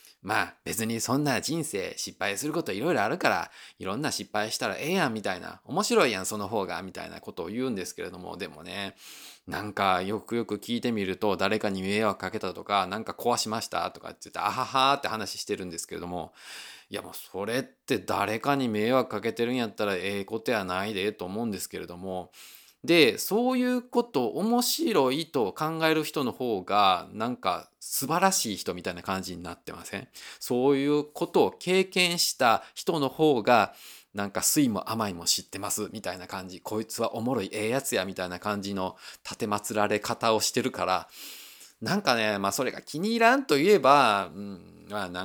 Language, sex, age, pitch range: Japanese, male, 20-39, 95-130 Hz